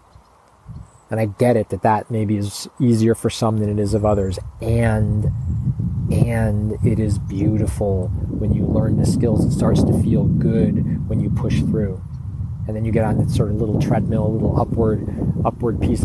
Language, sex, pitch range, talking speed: English, male, 105-115 Hz, 185 wpm